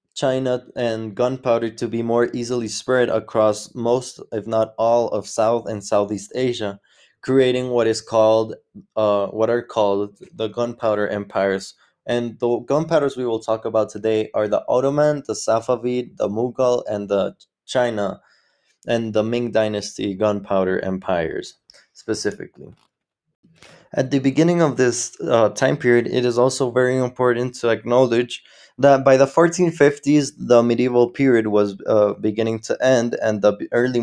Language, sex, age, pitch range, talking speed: English, male, 20-39, 105-125 Hz, 150 wpm